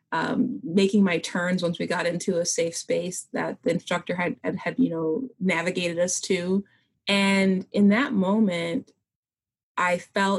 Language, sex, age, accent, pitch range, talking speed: English, female, 20-39, American, 175-220 Hz, 160 wpm